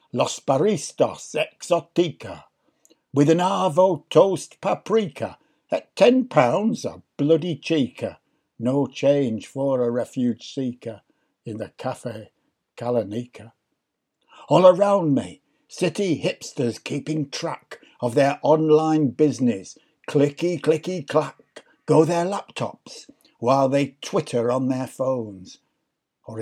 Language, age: English, 60-79